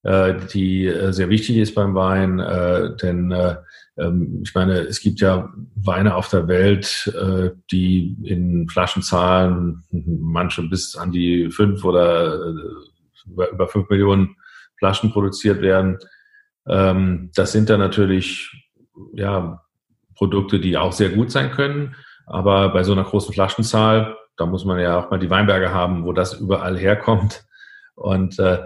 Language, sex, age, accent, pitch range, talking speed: German, male, 40-59, German, 90-105 Hz, 130 wpm